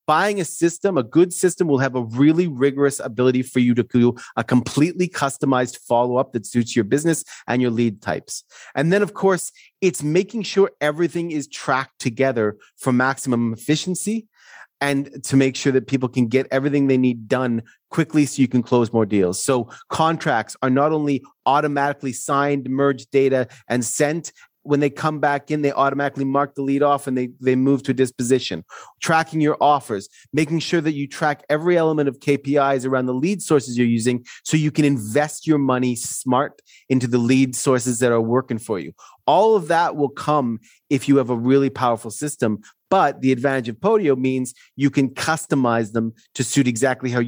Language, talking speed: English, 190 wpm